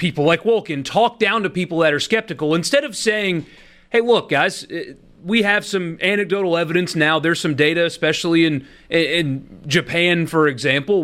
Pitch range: 150-210 Hz